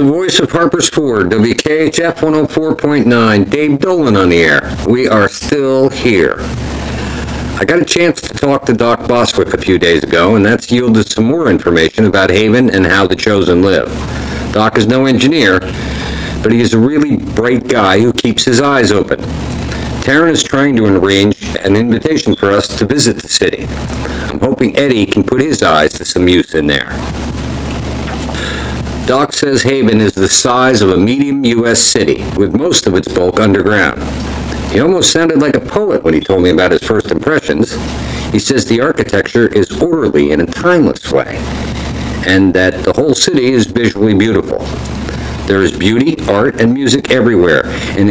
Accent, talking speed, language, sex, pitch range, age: American, 175 wpm, English, male, 70-120 Hz, 50-69